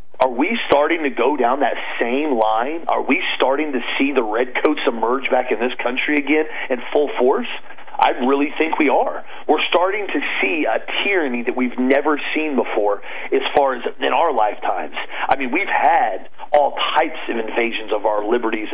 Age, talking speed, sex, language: 40-59, 185 wpm, male, English